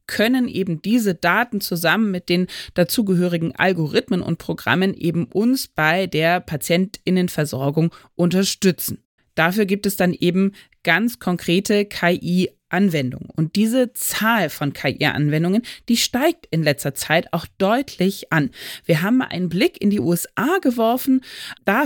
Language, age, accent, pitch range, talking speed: German, 30-49, German, 170-230 Hz, 130 wpm